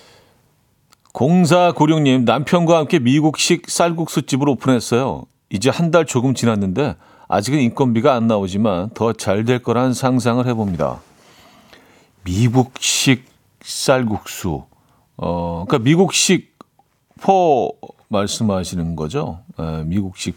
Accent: native